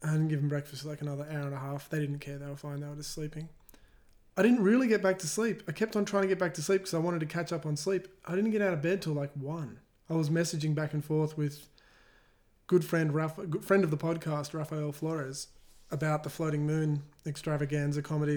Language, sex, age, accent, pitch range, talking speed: English, male, 20-39, Australian, 145-165 Hz, 250 wpm